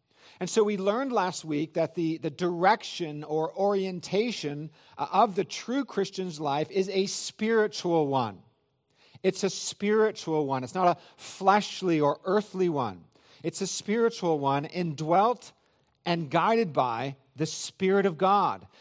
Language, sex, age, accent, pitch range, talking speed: English, male, 40-59, American, 150-195 Hz, 140 wpm